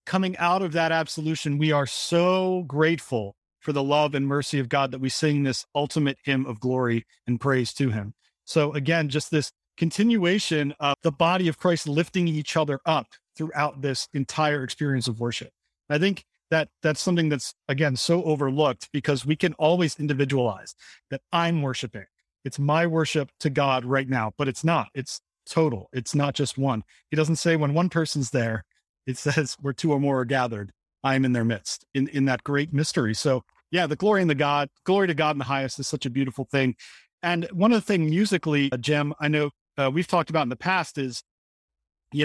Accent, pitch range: American, 135-165 Hz